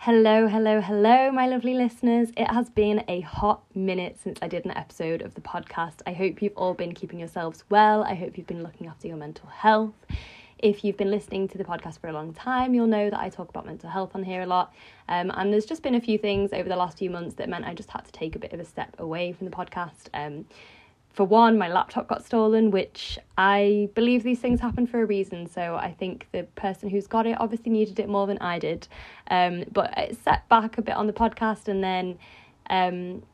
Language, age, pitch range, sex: English, 20-39, 185-220 Hz, female